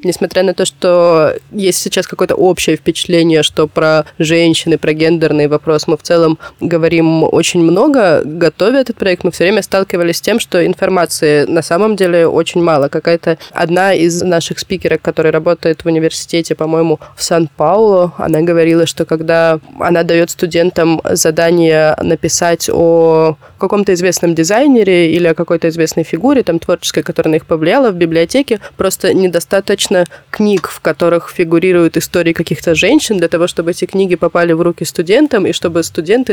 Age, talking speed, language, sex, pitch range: 20-39, 160 wpm, Russian, female, 165-185 Hz